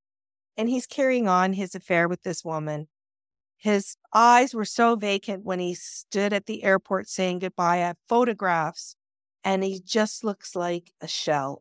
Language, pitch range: English, 165-215 Hz